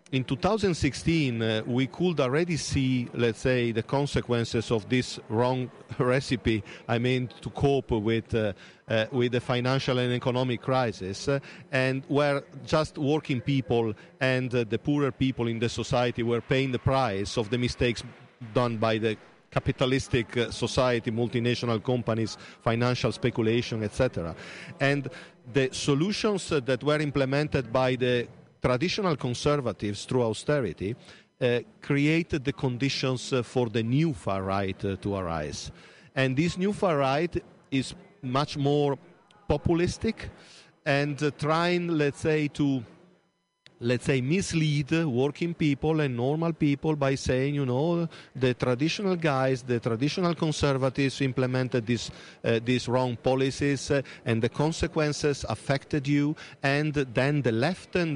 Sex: male